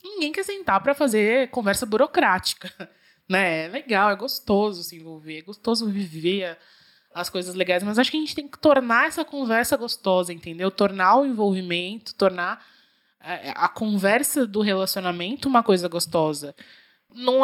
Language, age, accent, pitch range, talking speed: Portuguese, 20-39, Brazilian, 185-260 Hz, 150 wpm